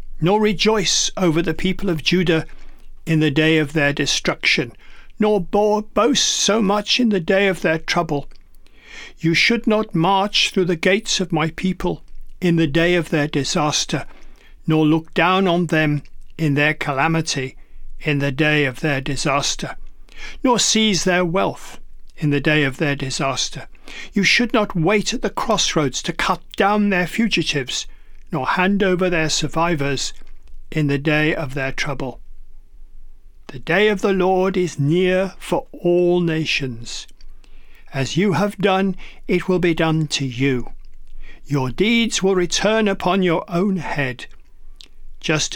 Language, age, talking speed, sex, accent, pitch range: English, 50-69, 150 wpm, male, British, 145-195 Hz